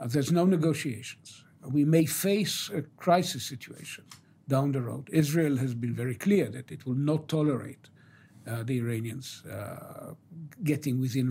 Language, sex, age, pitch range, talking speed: English, male, 60-79, 130-165 Hz, 150 wpm